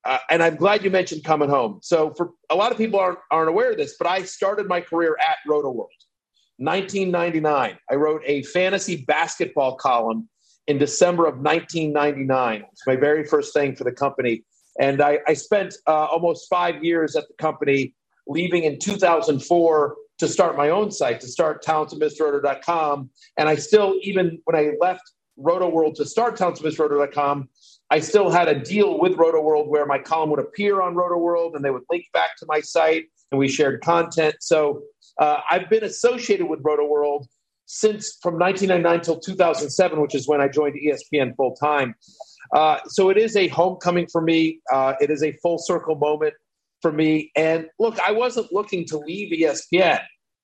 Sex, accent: male, American